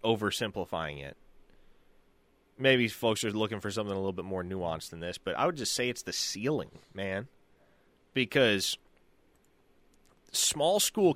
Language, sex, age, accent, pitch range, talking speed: English, male, 30-49, American, 115-155 Hz, 145 wpm